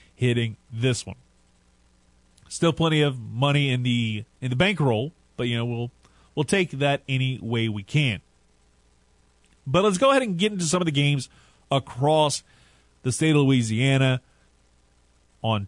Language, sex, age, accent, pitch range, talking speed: English, male, 30-49, American, 105-160 Hz, 155 wpm